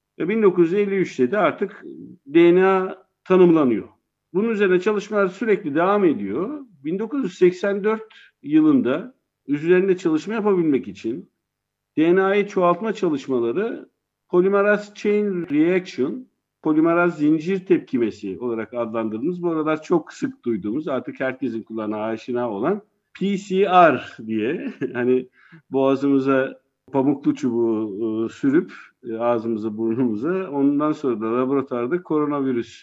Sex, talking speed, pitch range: male, 100 wpm, 130-195 Hz